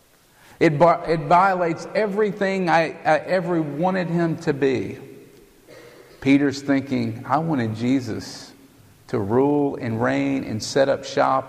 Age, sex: 50-69, male